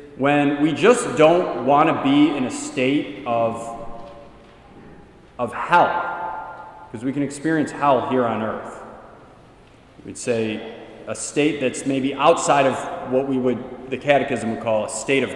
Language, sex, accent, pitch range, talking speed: English, male, American, 125-150 Hz, 150 wpm